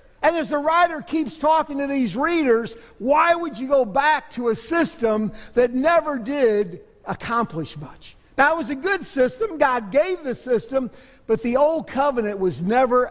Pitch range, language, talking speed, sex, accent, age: 200-290 Hz, English, 170 wpm, male, American, 60-79